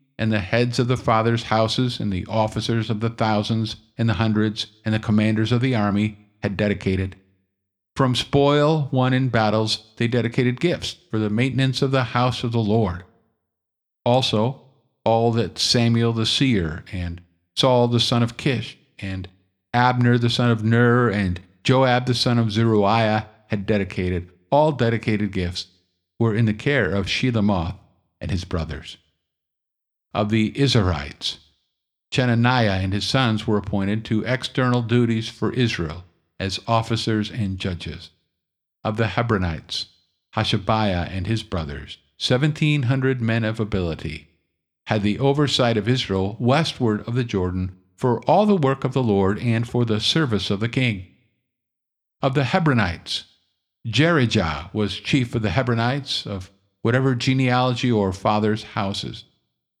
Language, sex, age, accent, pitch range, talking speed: English, male, 50-69, American, 95-120 Hz, 145 wpm